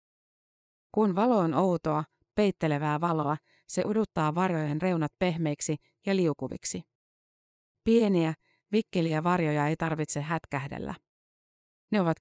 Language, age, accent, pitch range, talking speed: Finnish, 30-49, native, 155-190 Hz, 105 wpm